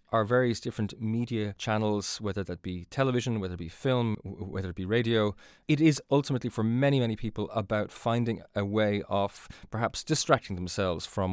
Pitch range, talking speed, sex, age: 100-120 Hz, 175 wpm, male, 30-49